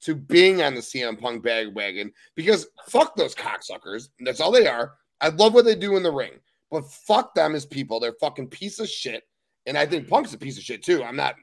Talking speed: 235 wpm